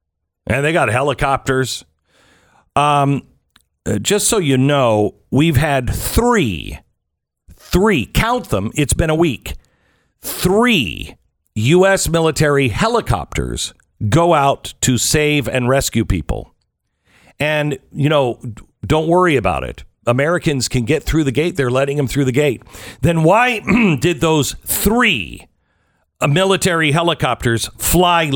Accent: American